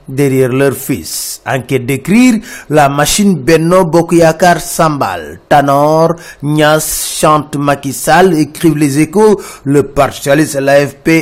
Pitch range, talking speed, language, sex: 140-165 Hz, 110 wpm, French, male